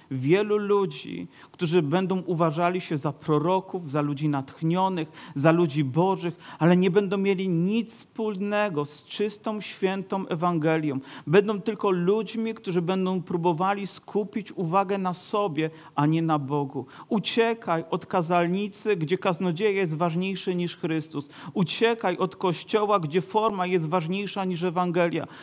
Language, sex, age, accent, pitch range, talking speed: Polish, male, 40-59, native, 175-200 Hz, 130 wpm